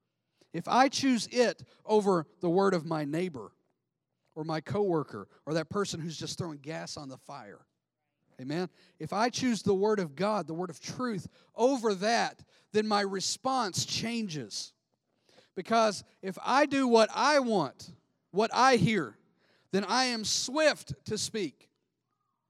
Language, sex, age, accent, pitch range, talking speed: English, male, 40-59, American, 150-210 Hz, 150 wpm